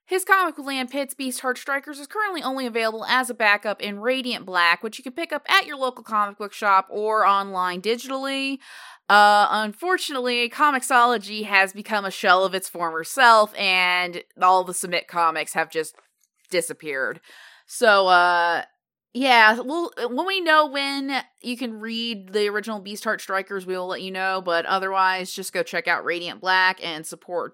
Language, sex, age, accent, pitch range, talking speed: English, female, 20-39, American, 185-245 Hz, 180 wpm